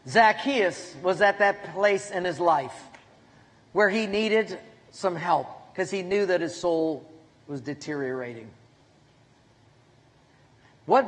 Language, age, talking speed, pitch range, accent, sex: English, 50-69, 120 wpm, 145-240 Hz, American, male